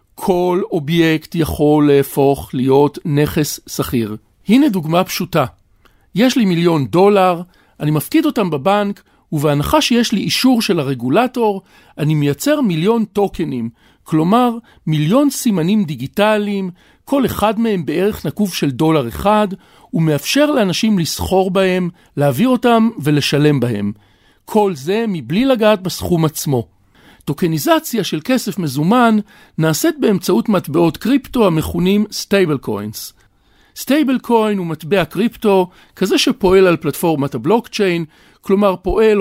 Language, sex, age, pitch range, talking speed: Hebrew, male, 50-69, 150-215 Hz, 120 wpm